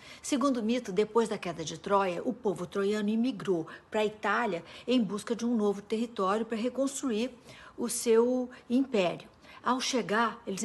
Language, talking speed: Portuguese, 165 wpm